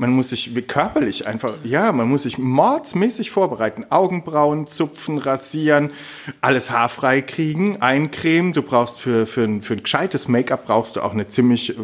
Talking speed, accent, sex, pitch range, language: 160 wpm, German, male, 115-150 Hz, German